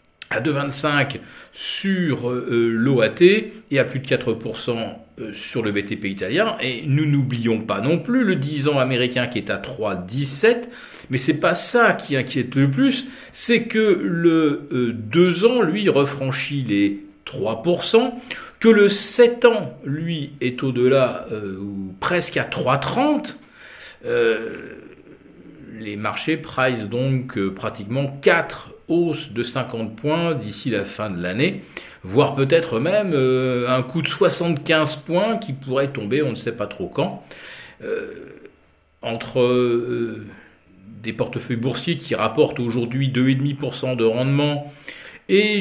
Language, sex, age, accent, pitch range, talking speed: French, male, 50-69, French, 120-170 Hz, 135 wpm